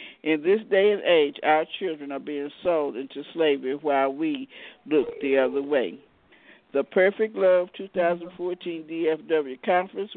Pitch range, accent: 145-185 Hz, American